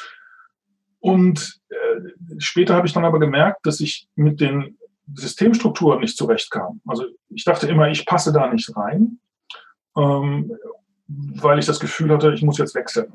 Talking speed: 145 wpm